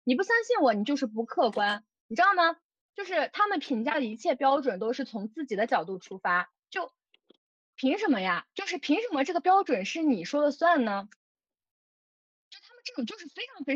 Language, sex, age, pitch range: Chinese, female, 20-39, 220-330 Hz